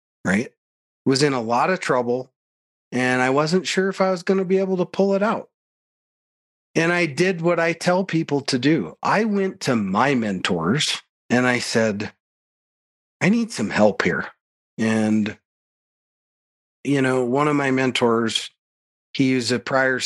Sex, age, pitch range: male, 40-59, 110-145 Hz